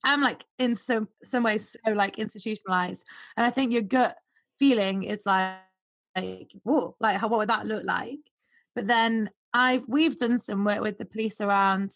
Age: 20-39